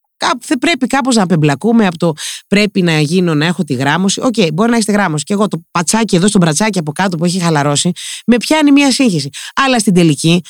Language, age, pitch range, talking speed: Greek, 30-49, 170-240 Hz, 225 wpm